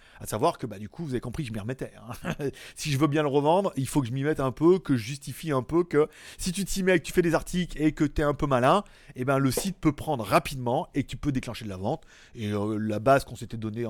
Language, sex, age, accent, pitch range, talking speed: French, male, 30-49, French, 130-200 Hz, 305 wpm